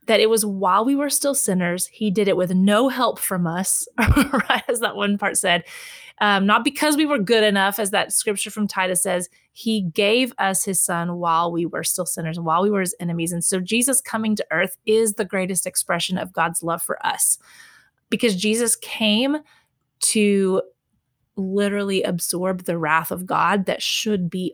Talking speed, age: 190 wpm, 30-49